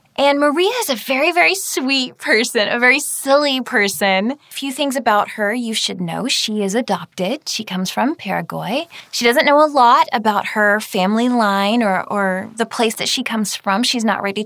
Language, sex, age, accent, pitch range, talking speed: English, female, 10-29, American, 190-260 Hz, 195 wpm